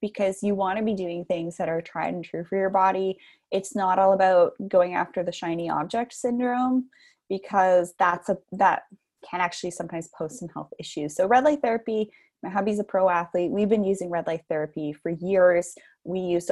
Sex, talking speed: female, 200 wpm